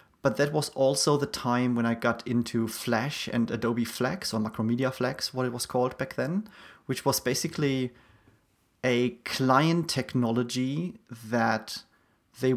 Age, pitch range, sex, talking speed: 30-49, 115-130 Hz, male, 150 wpm